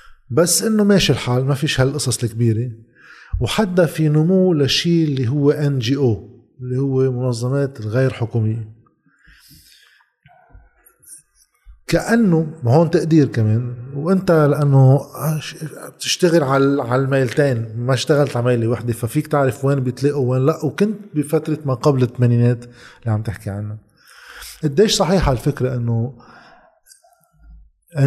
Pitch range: 125-165 Hz